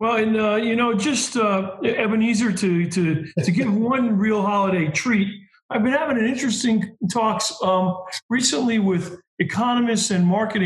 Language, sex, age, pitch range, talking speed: English, male, 50-69, 180-230 Hz, 160 wpm